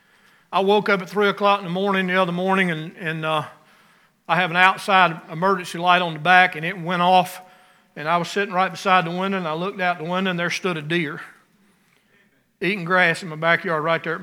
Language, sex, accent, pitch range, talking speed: English, male, American, 170-205 Hz, 230 wpm